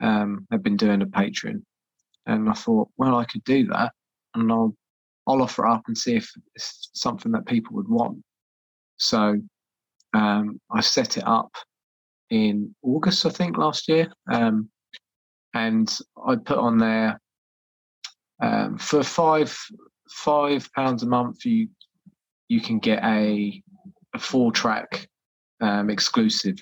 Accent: British